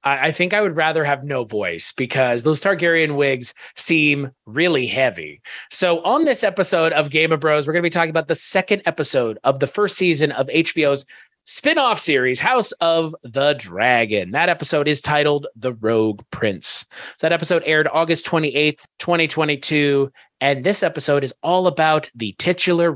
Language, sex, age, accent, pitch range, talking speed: English, male, 30-49, American, 145-185 Hz, 170 wpm